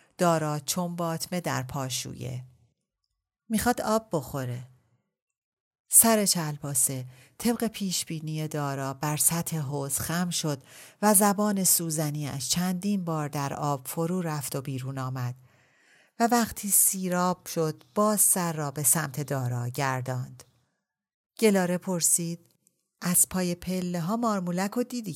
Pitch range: 135-185 Hz